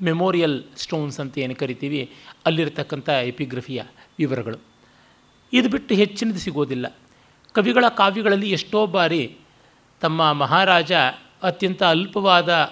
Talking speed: 95 wpm